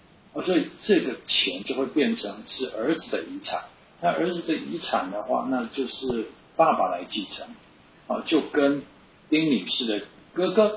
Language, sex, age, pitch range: Chinese, male, 50-69, 115-160 Hz